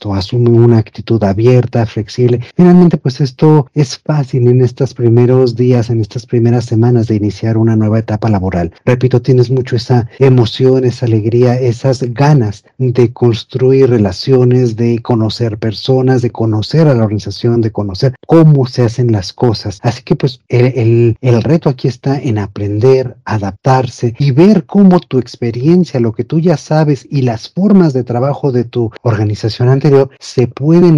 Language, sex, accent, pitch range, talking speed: Spanish, male, Mexican, 115-140 Hz, 165 wpm